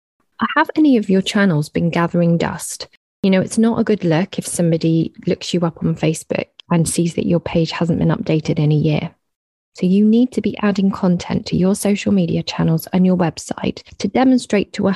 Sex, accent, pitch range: female, British, 165-205 Hz